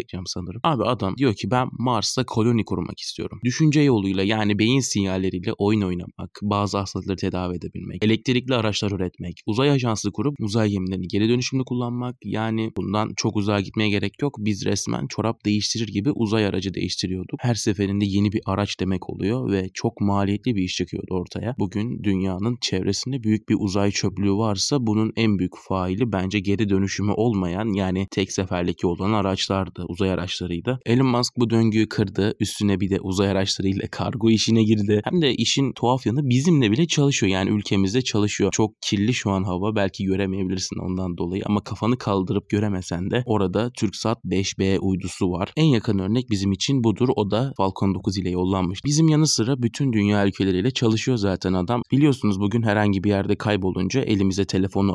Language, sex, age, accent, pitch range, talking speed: Turkish, male, 30-49, native, 95-115 Hz, 170 wpm